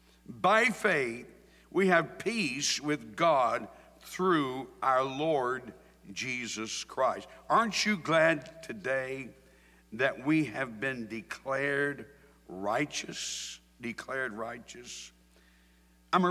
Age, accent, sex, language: 60-79, American, male, English